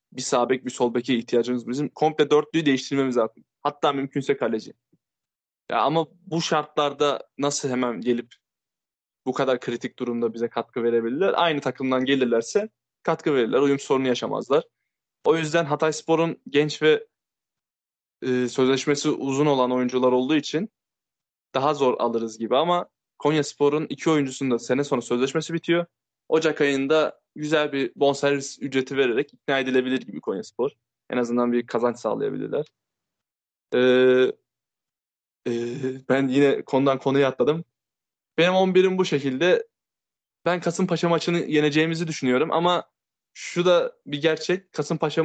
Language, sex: Turkish, male